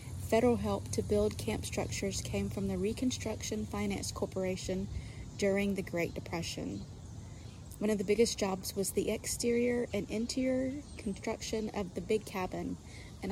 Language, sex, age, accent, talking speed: English, female, 30-49, American, 145 wpm